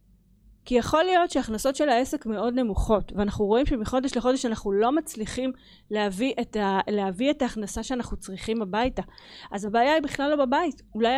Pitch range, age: 210-260 Hz, 30-49